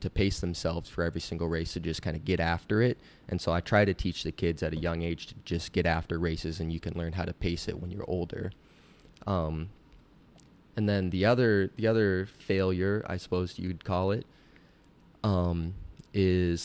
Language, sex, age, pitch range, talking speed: English, male, 20-39, 85-100 Hz, 205 wpm